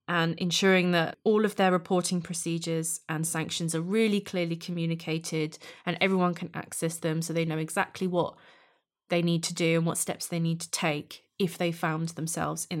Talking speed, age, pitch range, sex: 190 wpm, 20-39, 170-195 Hz, female